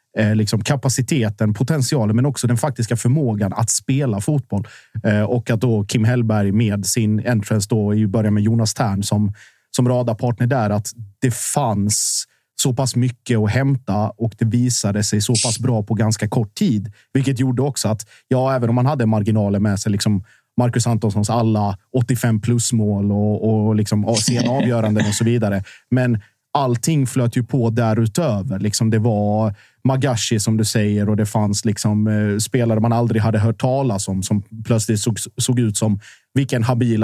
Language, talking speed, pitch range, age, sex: Swedish, 170 wpm, 105-125 Hz, 30-49, male